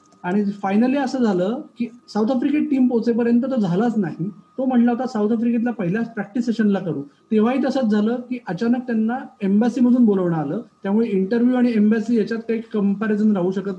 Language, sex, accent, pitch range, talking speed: Marathi, male, native, 185-235 Hz, 175 wpm